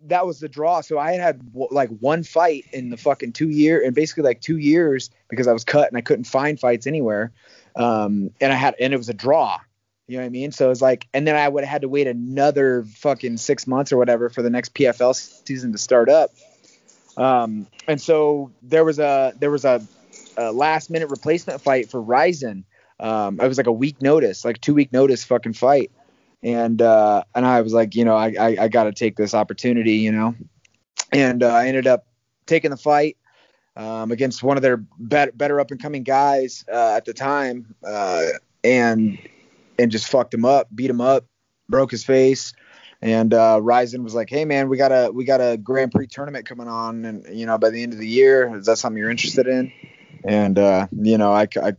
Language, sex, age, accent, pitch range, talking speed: English, male, 20-39, American, 115-140 Hz, 225 wpm